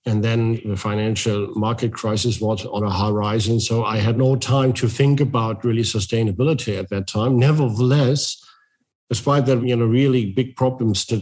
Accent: German